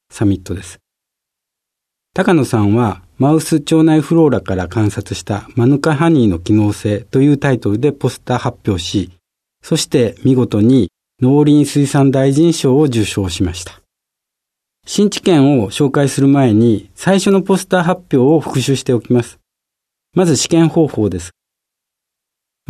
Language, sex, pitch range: Japanese, male, 105-150 Hz